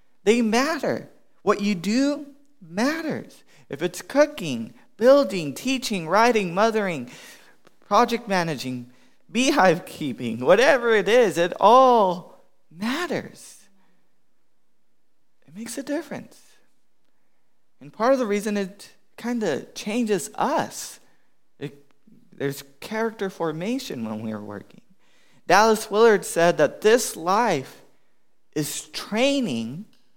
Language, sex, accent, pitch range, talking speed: English, male, American, 175-235 Hz, 100 wpm